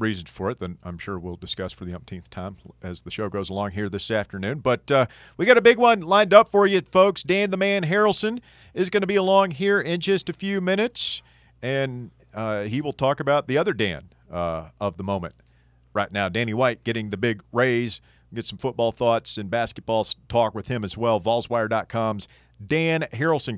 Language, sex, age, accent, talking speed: English, male, 40-59, American, 210 wpm